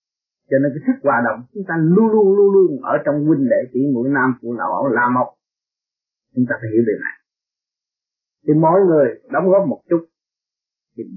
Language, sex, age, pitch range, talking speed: English, male, 30-49, 140-190 Hz, 200 wpm